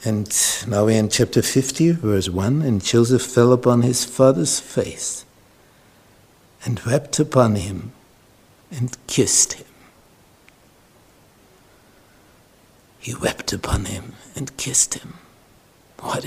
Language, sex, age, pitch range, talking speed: English, male, 60-79, 100-130 Hz, 110 wpm